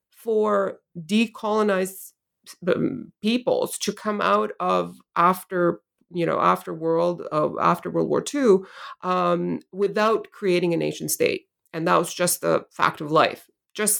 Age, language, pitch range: 30-49, English, 175-230 Hz